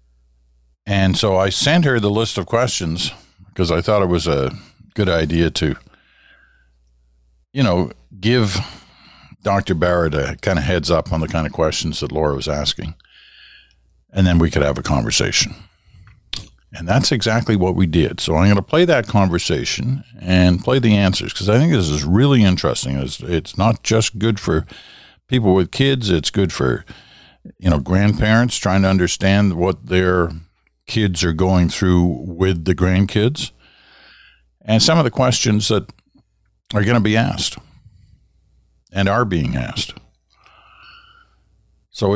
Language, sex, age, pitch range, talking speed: English, male, 60-79, 85-110 Hz, 160 wpm